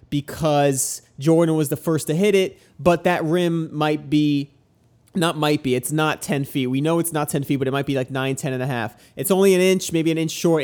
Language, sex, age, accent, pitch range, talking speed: English, male, 30-49, American, 140-165 Hz, 250 wpm